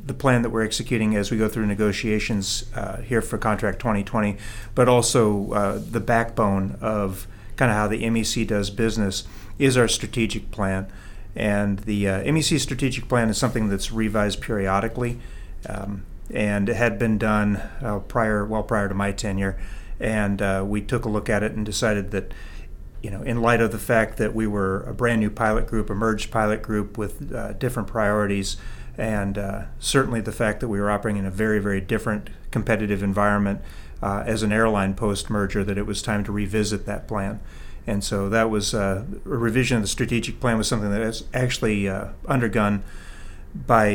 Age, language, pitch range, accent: 40-59, English, 100-115 Hz, American